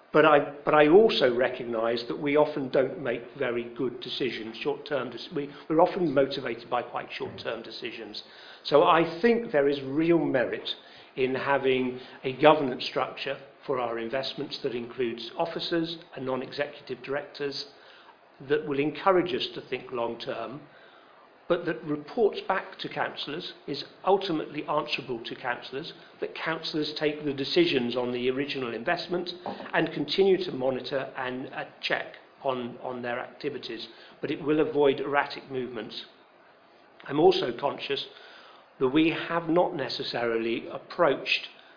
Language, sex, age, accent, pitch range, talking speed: English, male, 50-69, British, 130-170 Hz, 135 wpm